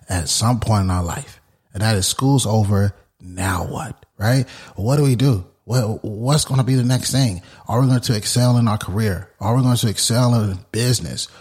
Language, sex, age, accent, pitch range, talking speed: English, male, 30-49, American, 100-125 Hz, 215 wpm